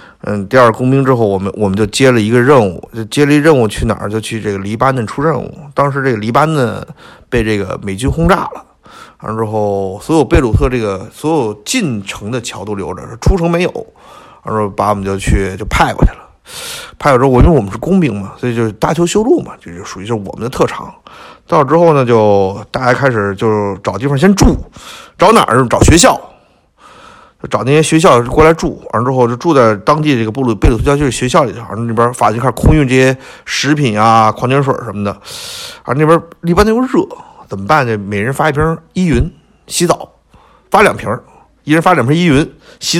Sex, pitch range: male, 110-155 Hz